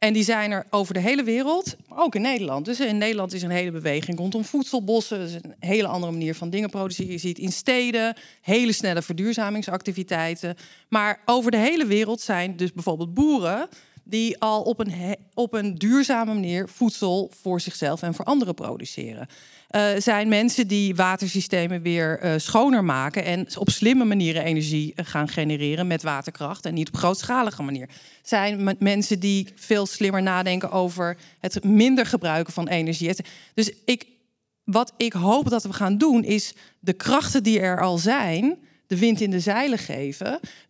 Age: 40-59